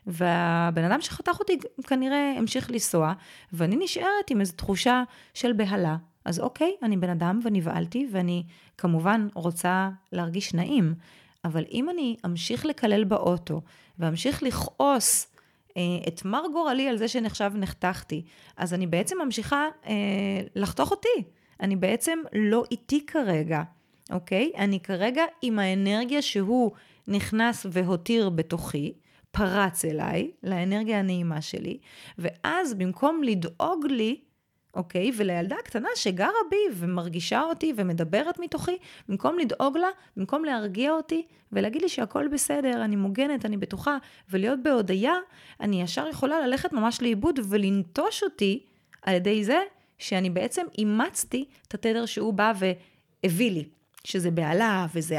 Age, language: 20-39, Hebrew